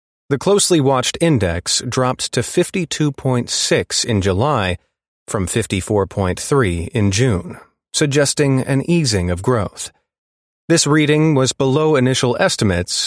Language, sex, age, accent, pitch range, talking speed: English, male, 30-49, American, 100-135 Hz, 110 wpm